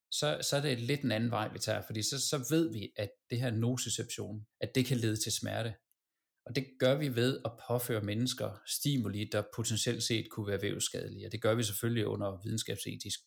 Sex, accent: male, native